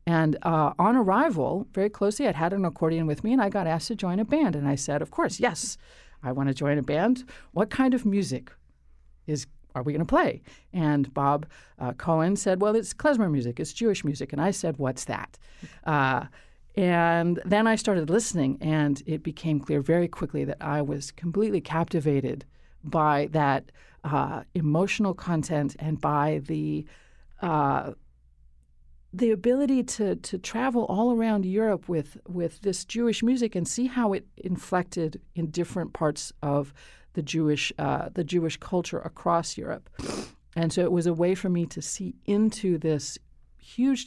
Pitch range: 145-195 Hz